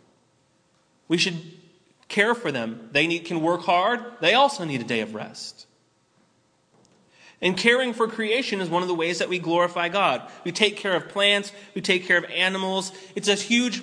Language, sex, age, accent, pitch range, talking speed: English, male, 30-49, American, 165-200 Hz, 180 wpm